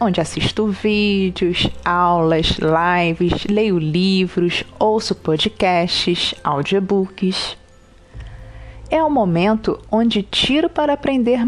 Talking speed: 90 wpm